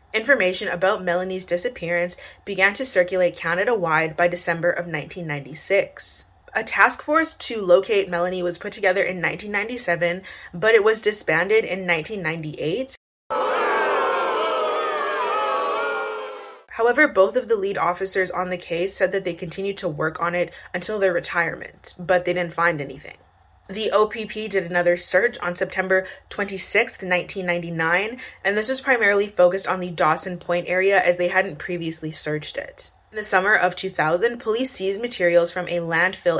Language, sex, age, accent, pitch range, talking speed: English, female, 20-39, American, 175-210 Hz, 150 wpm